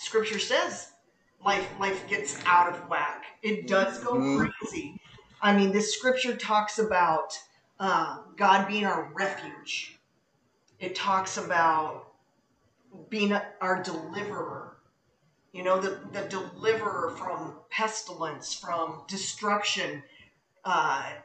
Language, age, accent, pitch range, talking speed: English, 40-59, American, 195-260 Hz, 115 wpm